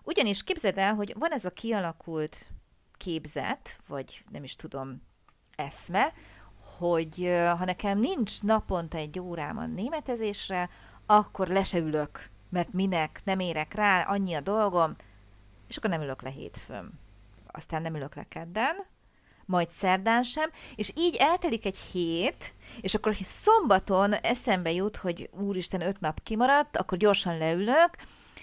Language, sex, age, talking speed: Hungarian, female, 30-49, 135 wpm